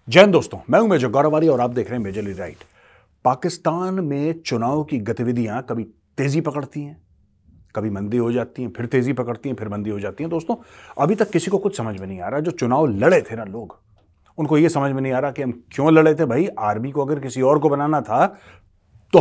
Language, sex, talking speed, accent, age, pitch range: Hindi, male, 235 wpm, native, 30-49, 105-165 Hz